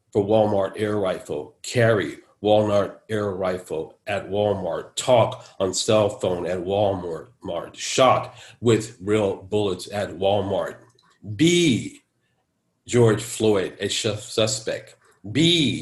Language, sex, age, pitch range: English, male, 50-69, 100-115 Hz